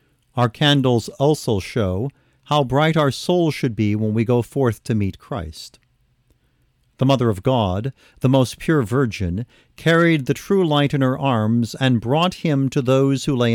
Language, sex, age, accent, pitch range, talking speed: English, male, 40-59, American, 110-145 Hz, 175 wpm